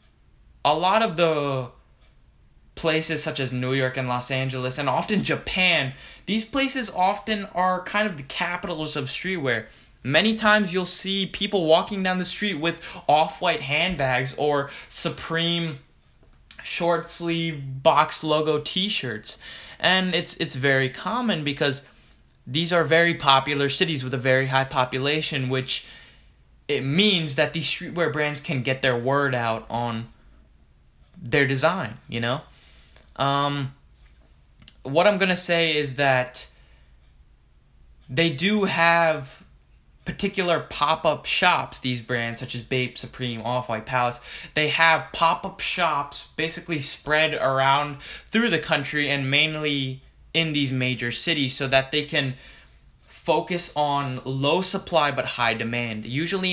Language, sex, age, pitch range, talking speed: English, male, 20-39, 130-170 Hz, 135 wpm